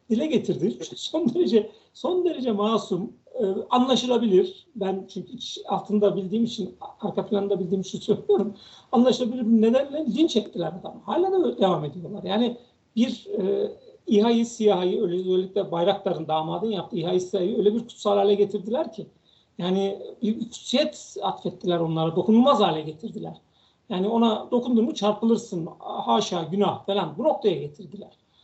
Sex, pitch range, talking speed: male, 195-250 Hz, 130 wpm